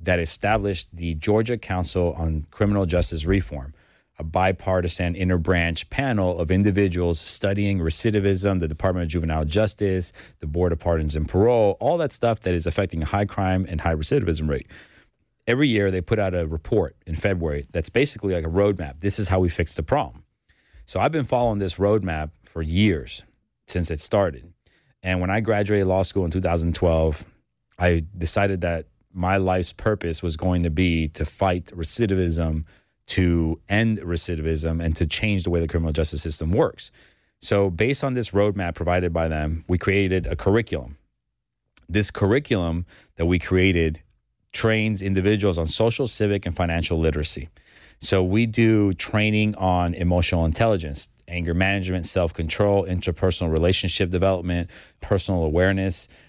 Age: 30-49